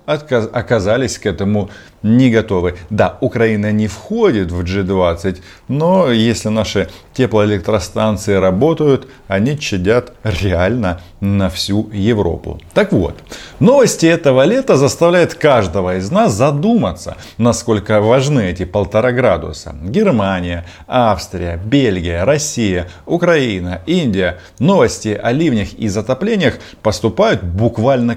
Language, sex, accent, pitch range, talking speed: Russian, male, native, 95-130 Hz, 105 wpm